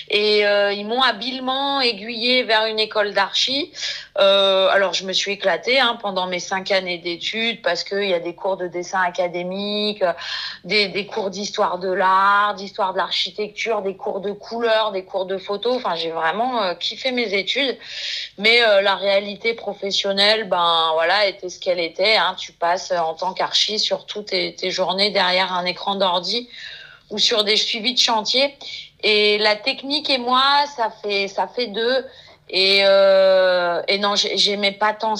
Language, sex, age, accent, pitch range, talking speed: French, female, 30-49, French, 190-220 Hz, 175 wpm